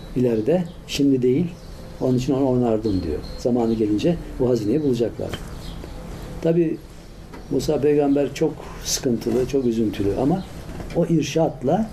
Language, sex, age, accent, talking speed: Turkish, male, 60-79, native, 115 wpm